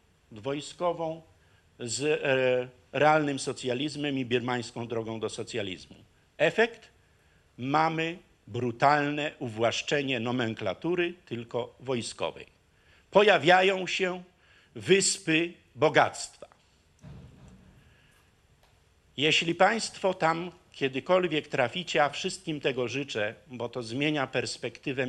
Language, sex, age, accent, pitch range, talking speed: Polish, male, 50-69, native, 125-175 Hz, 80 wpm